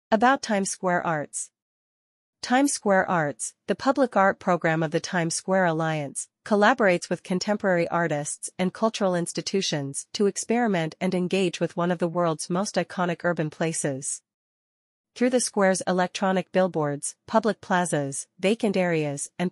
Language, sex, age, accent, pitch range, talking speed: English, female, 40-59, American, 165-200 Hz, 140 wpm